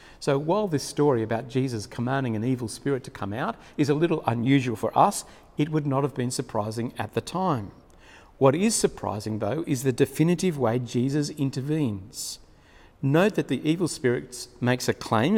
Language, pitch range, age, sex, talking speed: English, 125-175 Hz, 50-69, male, 180 wpm